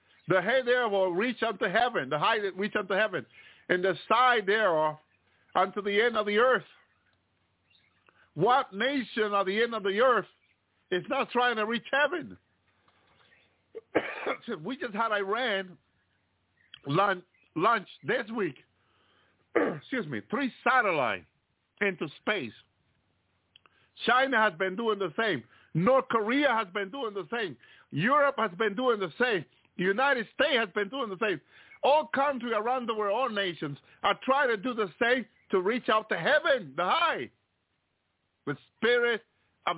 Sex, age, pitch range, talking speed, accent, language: male, 50-69, 180-245 Hz, 155 wpm, American, English